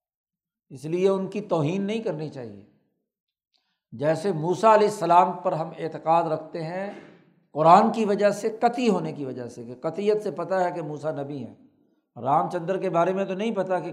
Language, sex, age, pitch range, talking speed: Urdu, male, 60-79, 165-205 Hz, 190 wpm